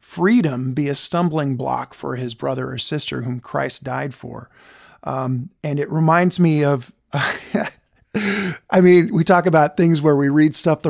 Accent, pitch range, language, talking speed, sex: American, 140-185 Hz, English, 170 wpm, male